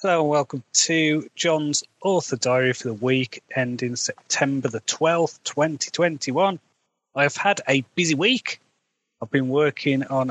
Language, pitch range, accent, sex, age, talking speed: English, 120-150 Hz, British, male, 30-49, 145 wpm